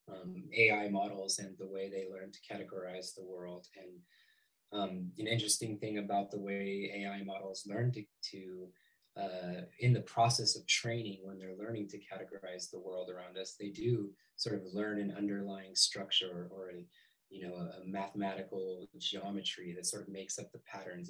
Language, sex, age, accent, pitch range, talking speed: English, male, 20-39, American, 95-110 Hz, 175 wpm